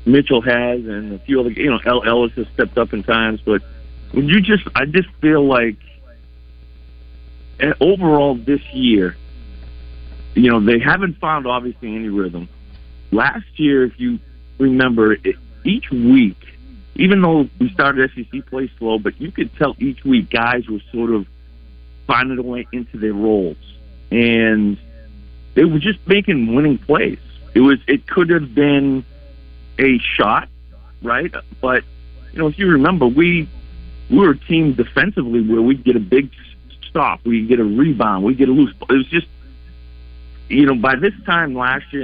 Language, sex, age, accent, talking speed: English, male, 50-69, American, 165 wpm